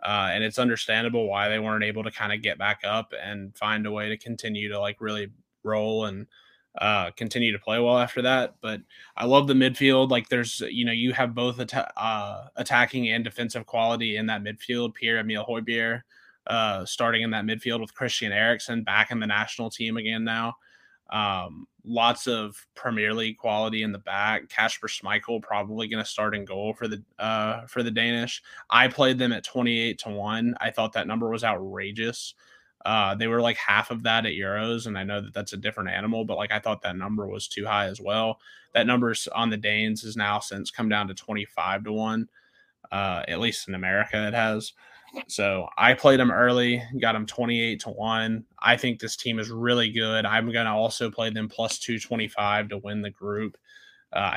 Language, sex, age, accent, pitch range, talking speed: English, male, 20-39, American, 105-115 Hz, 205 wpm